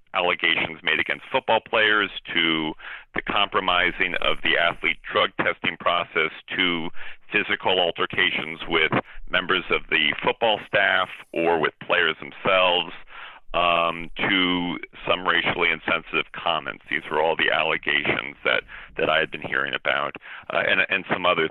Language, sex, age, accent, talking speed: English, male, 40-59, American, 140 wpm